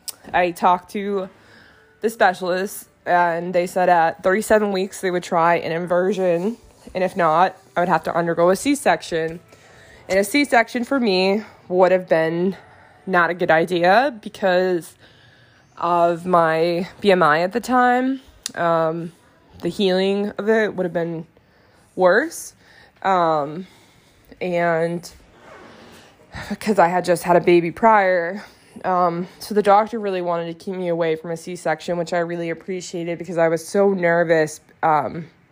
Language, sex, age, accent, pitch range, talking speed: English, female, 20-39, American, 165-200 Hz, 145 wpm